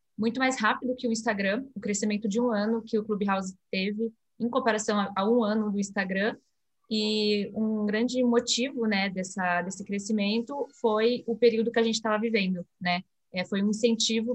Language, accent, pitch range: Portuguese, Brazilian, 200-230 Hz